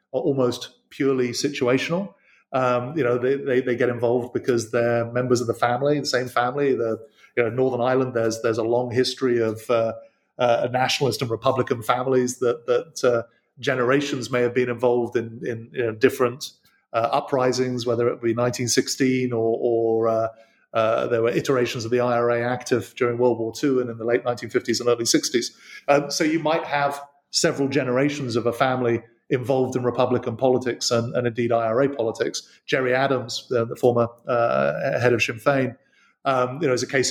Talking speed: 185 wpm